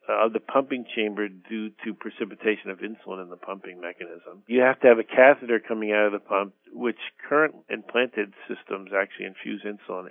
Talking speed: 185 wpm